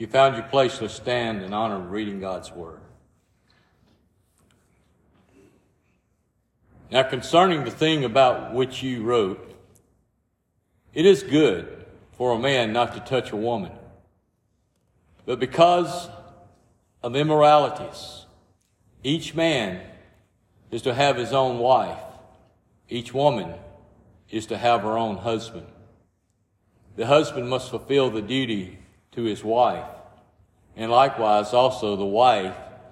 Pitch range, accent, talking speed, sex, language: 105-130 Hz, American, 120 wpm, male, English